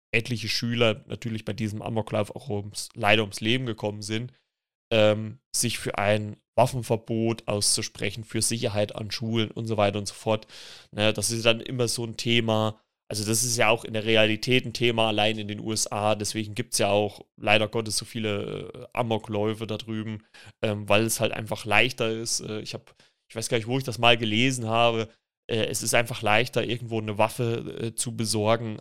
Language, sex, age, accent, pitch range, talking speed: German, male, 20-39, German, 105-120 Hz, 195 wpm